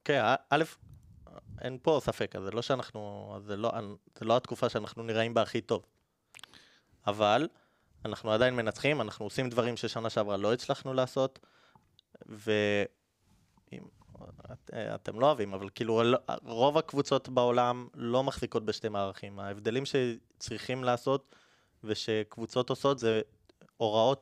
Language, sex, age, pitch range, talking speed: Hebrew, male, 20-39, 110-130 Hz, 125 wpm